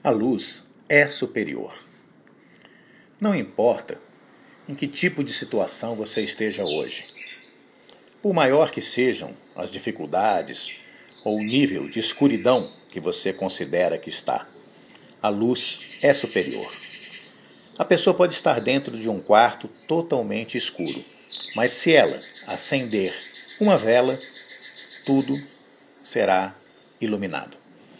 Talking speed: 115 wpm